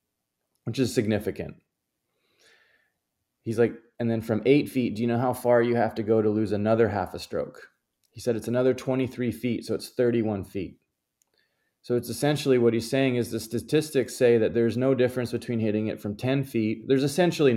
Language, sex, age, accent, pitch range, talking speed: English, male, 20-39, American, 100-125 Hz, 195 wpm